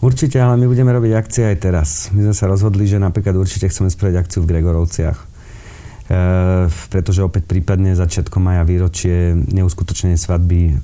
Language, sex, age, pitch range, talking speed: Slovak, male, 40-59, 90-100 Hz, 160 wpm